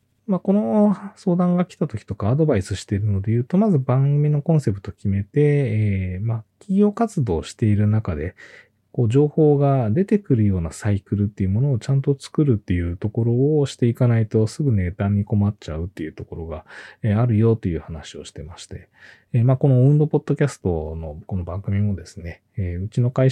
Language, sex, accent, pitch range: Japanese, male, native, 100-140 Hz